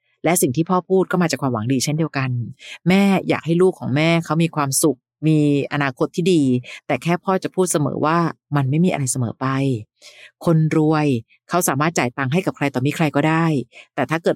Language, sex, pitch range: Thai, female, 135-175 Hz